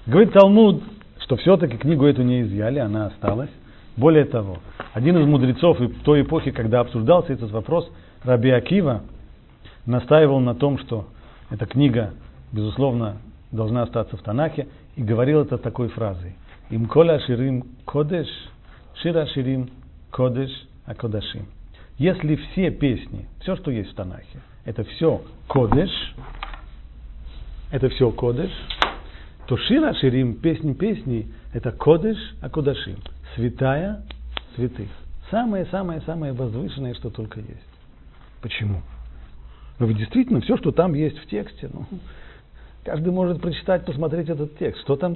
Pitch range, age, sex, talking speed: 100-150 Hz, 50-69, male, 125 wpm